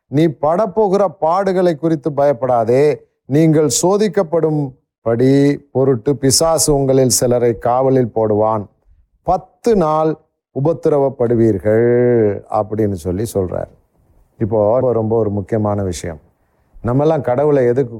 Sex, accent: male, native